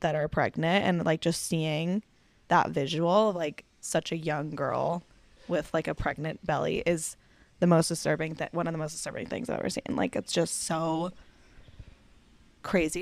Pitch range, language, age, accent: 165-185 Hz, English, 10-29, American